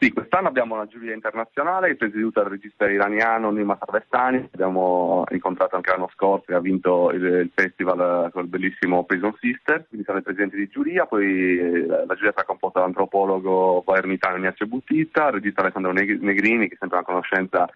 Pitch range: 90-110 Hz